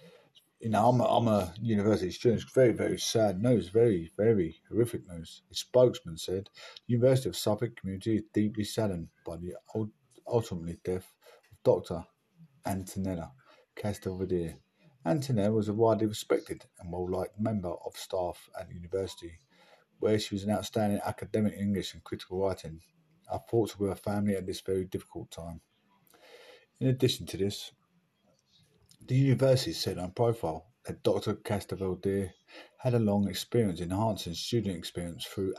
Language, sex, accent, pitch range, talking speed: English, male, British, 90-120 Hz, 150 wpm